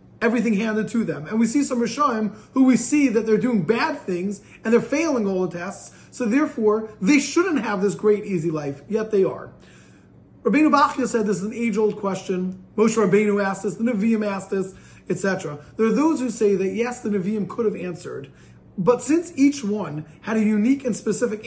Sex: male